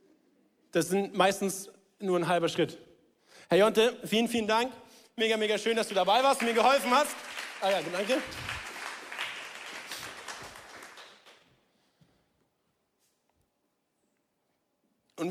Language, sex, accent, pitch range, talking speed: German, male, German, 170-215 Hz, 105 wpm